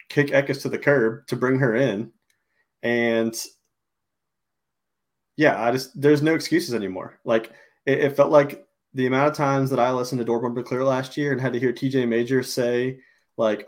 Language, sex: English, male